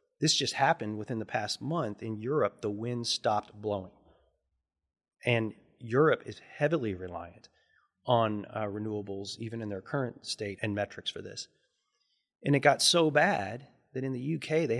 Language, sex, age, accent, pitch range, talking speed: English, male, 30-49, American, 110-140 Hz, 160 wpm